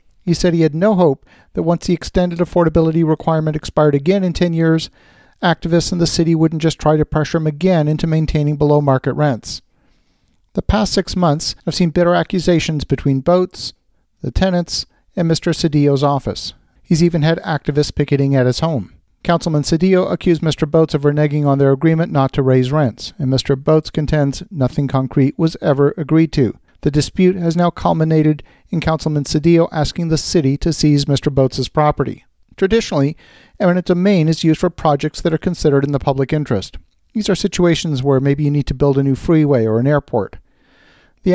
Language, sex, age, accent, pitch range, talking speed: English, male, 50-69, American, 140-170 Hz, 185 wpm